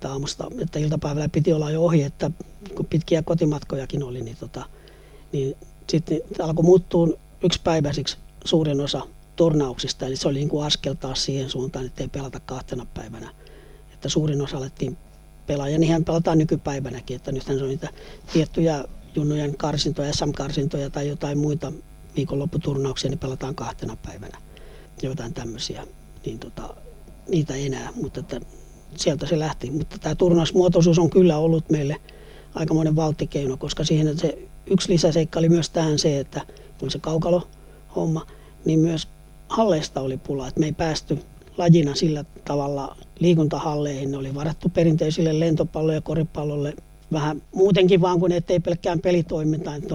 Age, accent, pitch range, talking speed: 60-79, native, 140-165 Hz, 145 wpm